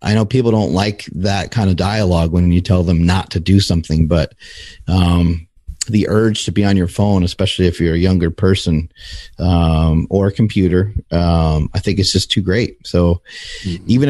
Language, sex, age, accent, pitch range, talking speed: English, male, 30-49, American, 85-100 Hz, 190 wpm